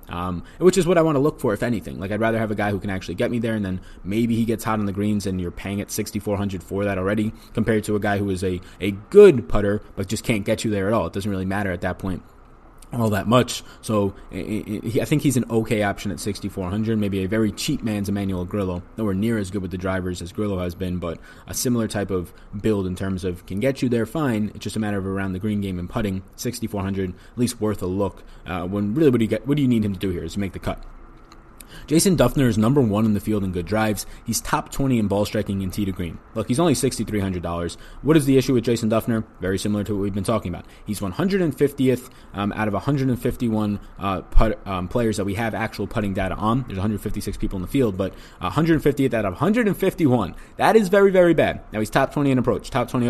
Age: 20-39